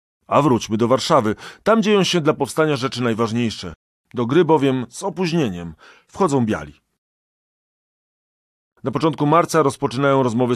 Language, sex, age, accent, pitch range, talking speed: Polish, male, 40-59, native, 115-150 Hz, 130 wpm